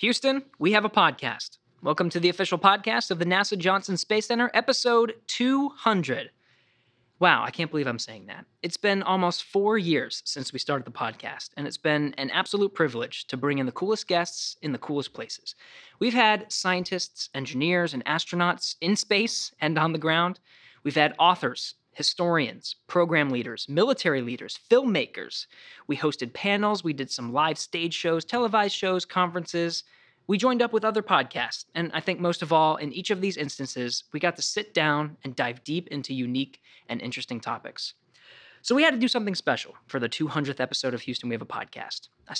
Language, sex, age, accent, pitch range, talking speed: English, male, 20-39, American, 145-200 Hz, 185 wpm